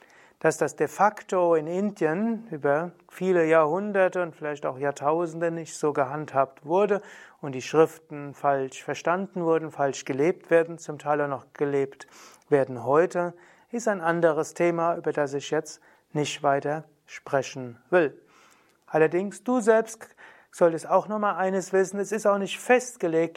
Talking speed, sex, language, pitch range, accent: 150 wpm, male, German, 150-185 Hz, German